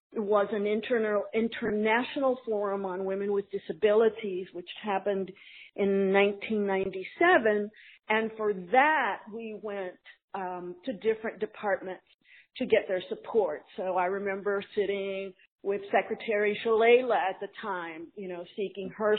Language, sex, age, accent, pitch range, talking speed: English, female, 50-69, American, 185-220 Hz, 130 wpm